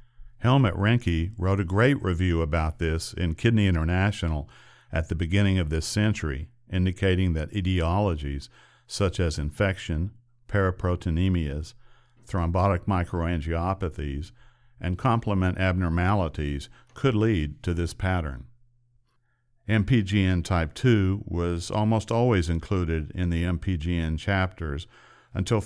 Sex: male